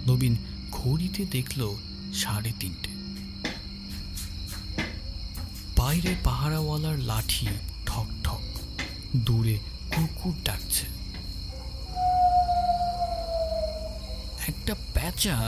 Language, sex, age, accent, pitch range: Bengali, male, 50-69, native, 95-145 Hz